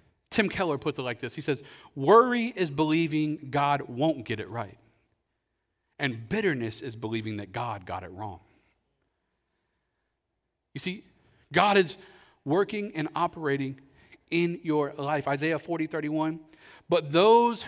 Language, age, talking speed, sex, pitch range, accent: English, 40-59, 135 wpm, male, 150-240 Hz, American